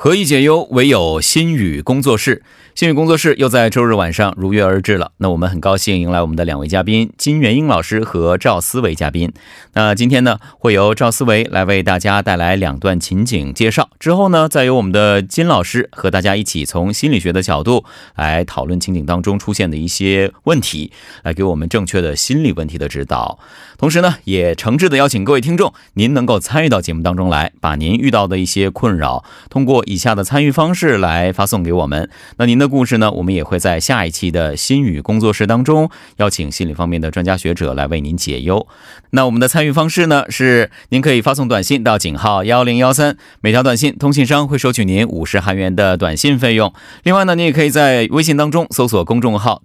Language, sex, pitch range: Korean, male, 90-135 Hz